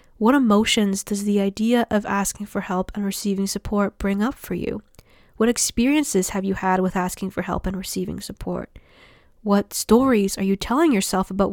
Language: English